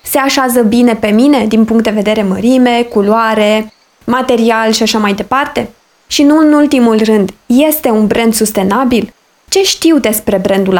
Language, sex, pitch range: Romanian, female, 215-285 Hz